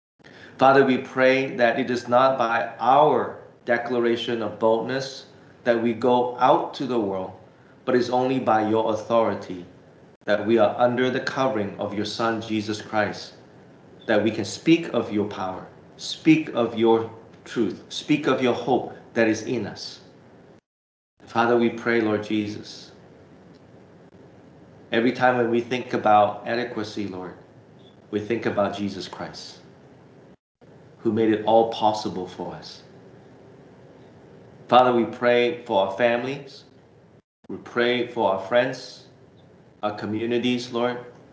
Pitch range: 105-125 Hz